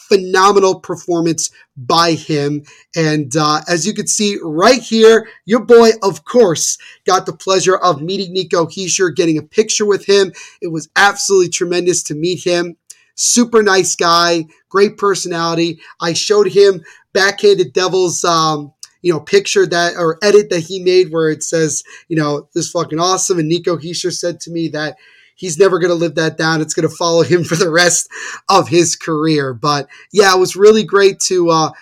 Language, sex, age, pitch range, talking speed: English, male, 30-49, 160-195 Hz, 180 wpm